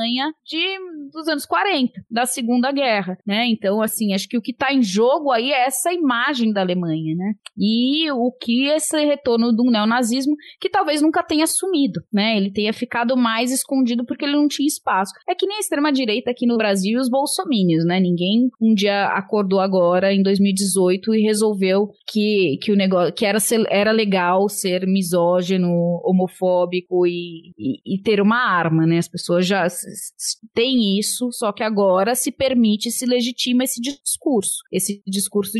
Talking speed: 165 wpm